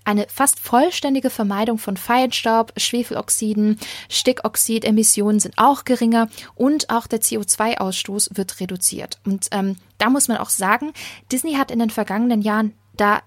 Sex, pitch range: female, 200-240 Hz